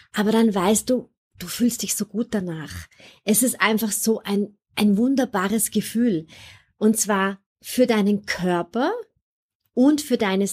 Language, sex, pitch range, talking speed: German, female, 200-240 Hz, 150 wpm